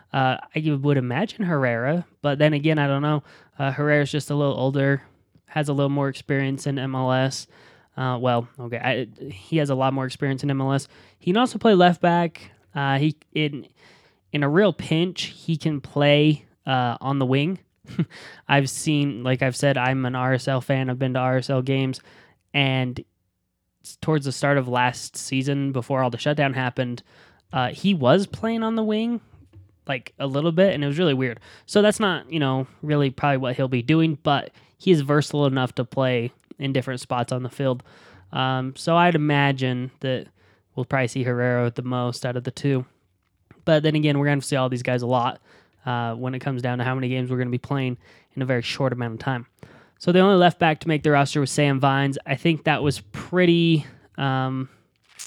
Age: 10-29